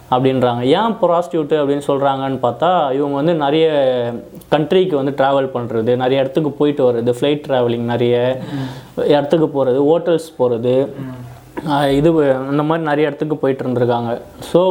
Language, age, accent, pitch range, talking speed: Tamil, 20-39, native, 125-160 Hz, 130 wpm